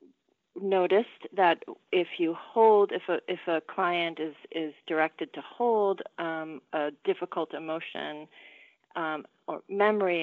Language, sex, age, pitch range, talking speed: English, female, 30-49, 160-190 Hz, 130 wpm